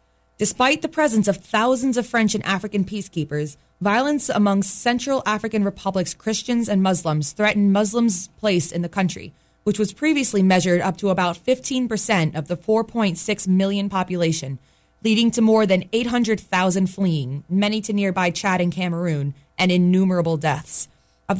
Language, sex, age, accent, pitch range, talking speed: English, female, 20-39, American, 175-220 Hz, 150 wpm